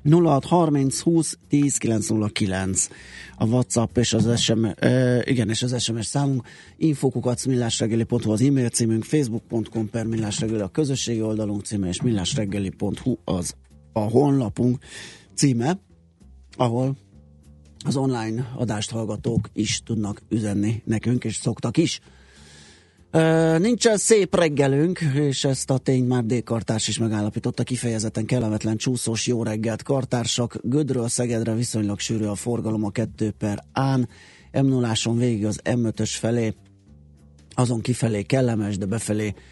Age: 30-49